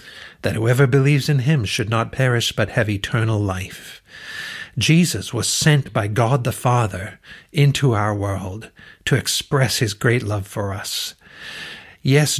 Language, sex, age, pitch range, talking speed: English, male, 60-79, 110-140 Hz, 145 wpm